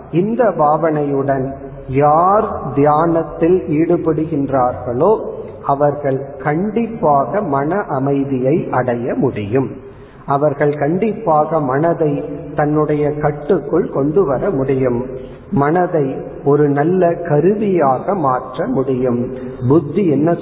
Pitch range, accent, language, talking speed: 140-175 Hz, native, Tamil, 75 wpm